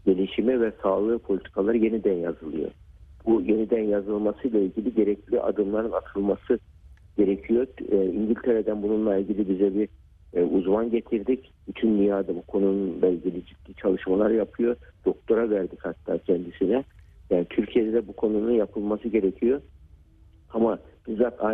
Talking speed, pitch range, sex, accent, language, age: 115 wpm, 95-115 Hz, male, native, Turkish, 60-79